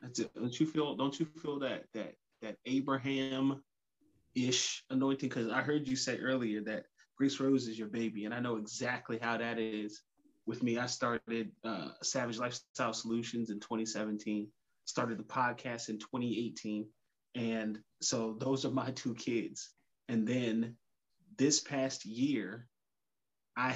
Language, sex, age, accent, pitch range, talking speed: English, male, 20-39, American, 110-130 Hz, 155 wpm